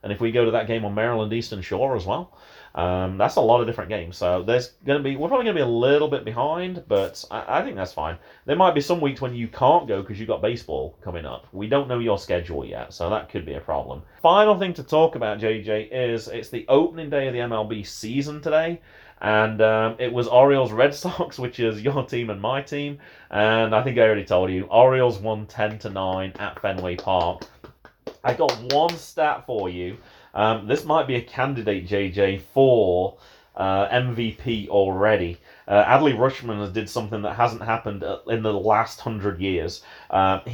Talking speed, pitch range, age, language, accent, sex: 210 wpm, 100-130 Hz, 30-49, English, British, male